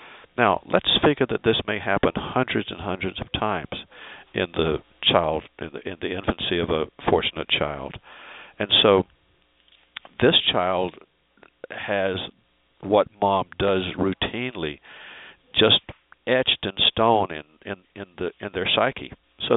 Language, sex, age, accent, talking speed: English, male, 60-79, American, 140 wpm